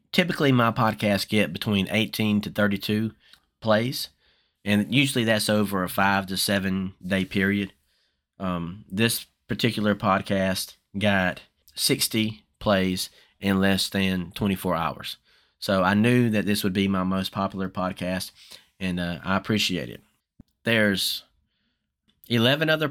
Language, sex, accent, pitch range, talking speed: English, male, American, 95-110 Hz, 130 wpm